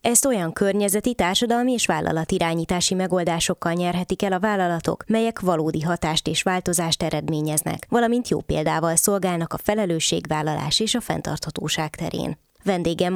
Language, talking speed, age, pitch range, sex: Hungarian, 130 wpm, 20-39, 155-185 Hz, female